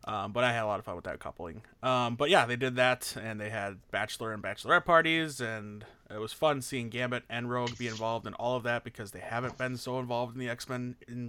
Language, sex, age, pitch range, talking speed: English, male, 20-39, 110-135 Hz, 255 wpm